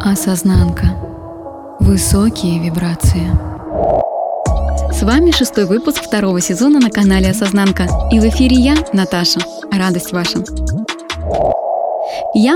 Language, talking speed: Russian, 95 wpm